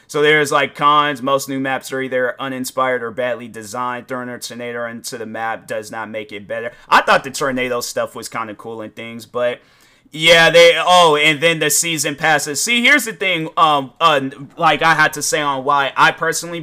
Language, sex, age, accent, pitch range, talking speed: English, male, 30-49, American, 135-170 Hz, 215 wpm